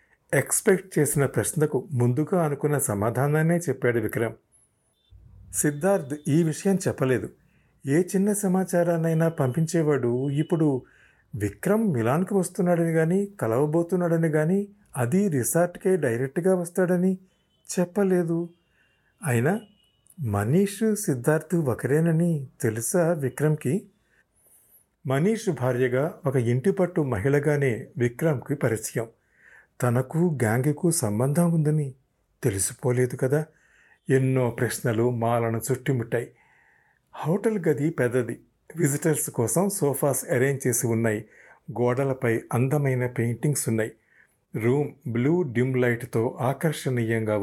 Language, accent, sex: Telugu, native, male